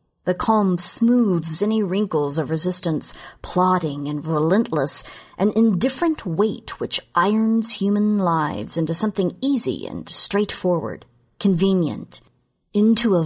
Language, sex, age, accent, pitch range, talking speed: English, female, 50-69, American, 165-215 Hz, 115 wpm